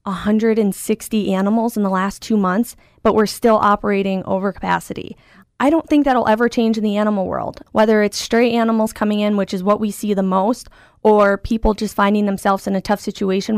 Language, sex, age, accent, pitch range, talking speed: English, female, 10-29, American, 205-235 Hz, 200 wpm